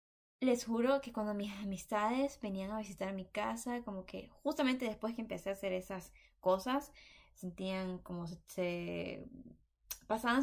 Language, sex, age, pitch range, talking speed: Spanish, female, 10-29, 185-255 Hz, 150 wpm